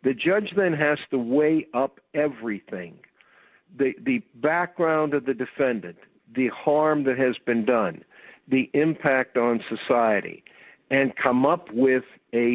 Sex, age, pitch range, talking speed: male, 60-79, 125-160 Hz, 140 wpm